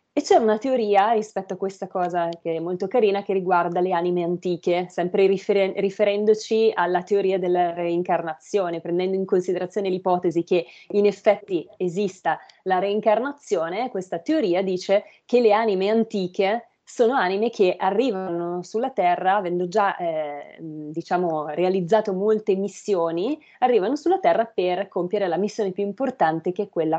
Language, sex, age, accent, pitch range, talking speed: Italian, female, 20-39, native, 175-205 Hz, 140 wpm